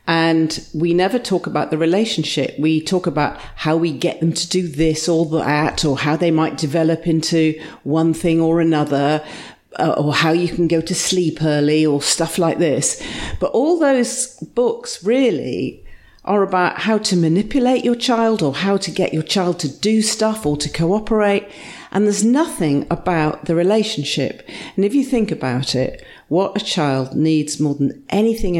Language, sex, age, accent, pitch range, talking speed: English, female, 40-59, British, 150-180 Hz, 175 wpm